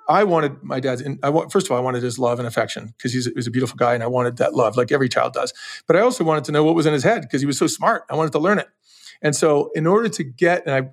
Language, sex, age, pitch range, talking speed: English, male, 40-59, 130-160 Hz, 315 wpm